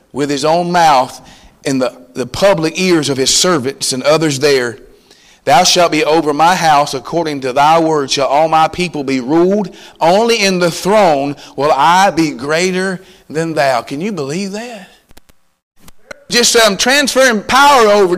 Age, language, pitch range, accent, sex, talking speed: 40-59, English, 165-260 Hz, American, male, 165 wpm